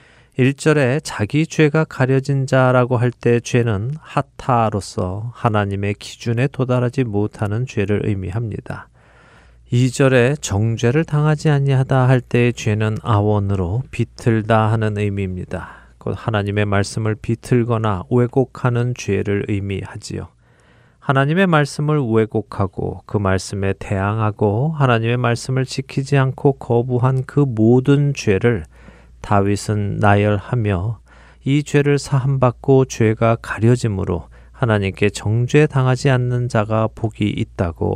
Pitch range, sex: 105-130 Hz, male